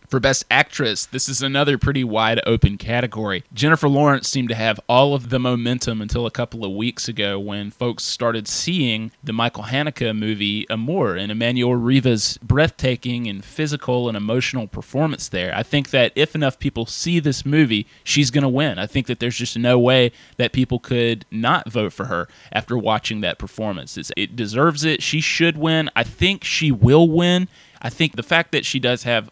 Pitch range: 110-135 Hz